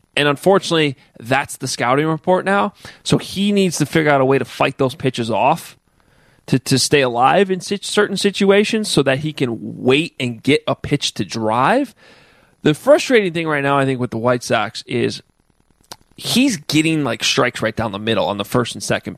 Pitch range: 125-180 Hz